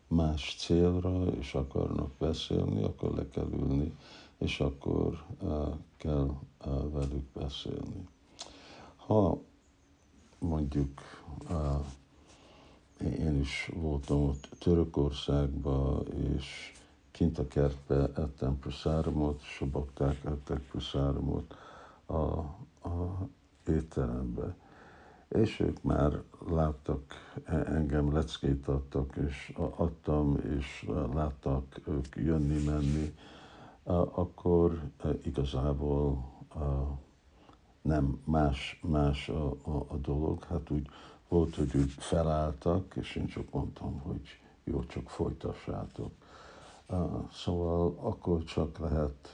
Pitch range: 70-80 Hz